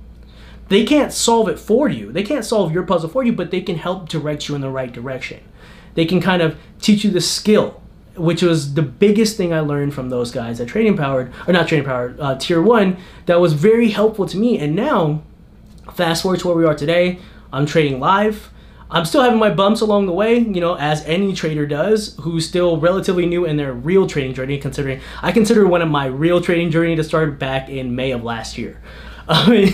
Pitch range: 150-195 Hz